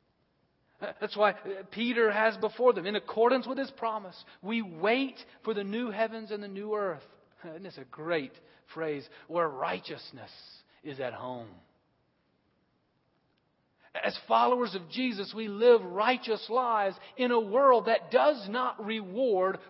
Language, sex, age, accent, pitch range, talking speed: English, male, 40-59, American, 170-230 Hz, 140 wpm